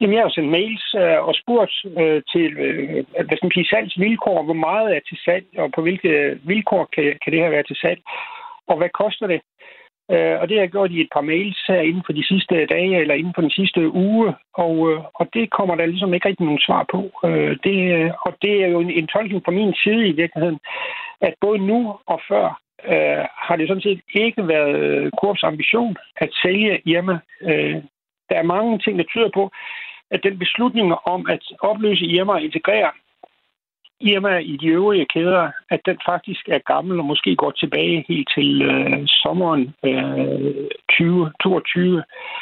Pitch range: 160-215 Hz